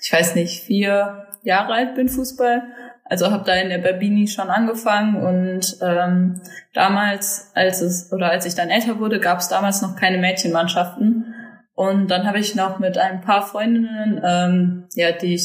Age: 20-39